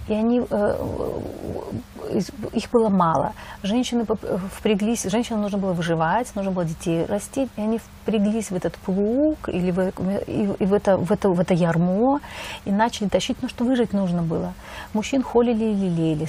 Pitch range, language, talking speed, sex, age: 185-220 Hz, Russian, 155 wpm, female, 30-49